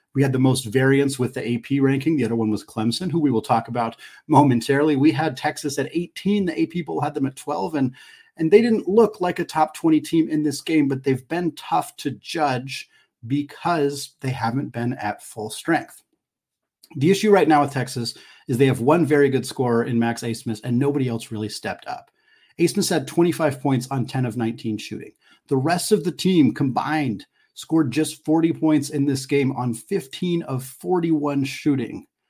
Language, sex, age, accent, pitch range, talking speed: English, male, 40-59, American, 130-160 Hz, 200 wpm